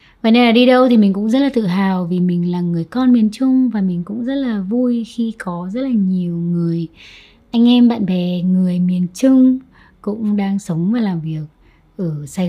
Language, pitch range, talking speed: Vietnamese, 180-245 Hz, 220 wpm